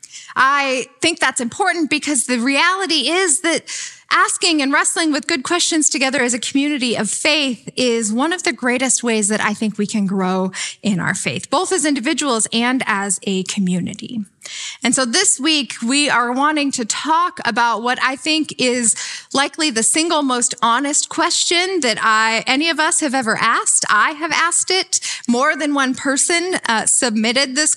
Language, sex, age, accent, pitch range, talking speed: English, female, 10-29, American, 215-295 Hz, 175 wpm